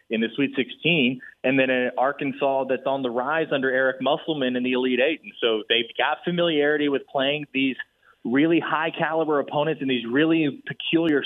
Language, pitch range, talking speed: English, 135-160 Hz, 185 wpm